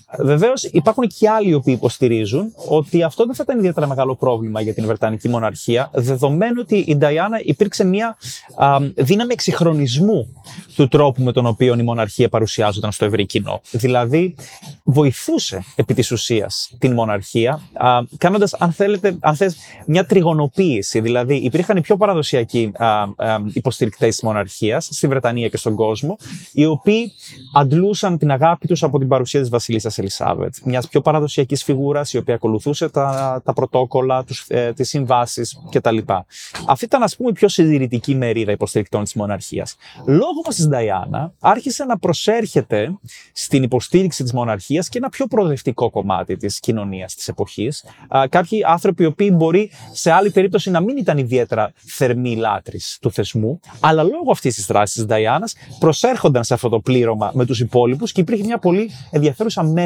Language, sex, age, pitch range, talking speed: Greek, male, 30-49, 120-175 Hz, 155 wpm